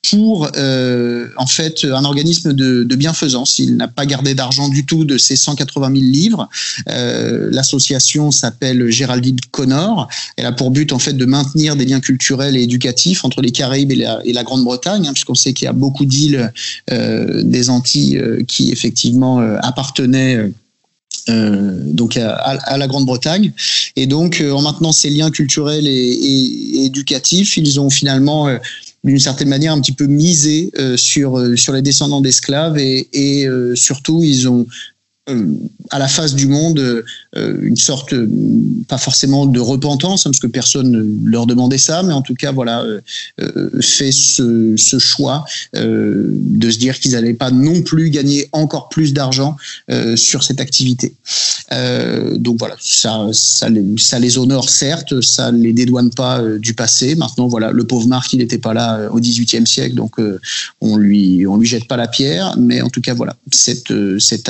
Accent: French